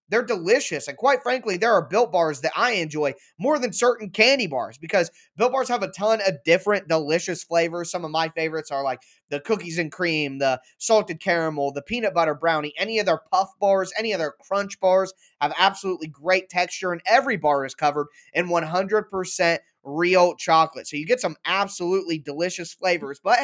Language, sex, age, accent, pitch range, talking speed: English, male, 20-39, American, 170-225 Hz, 190 wpm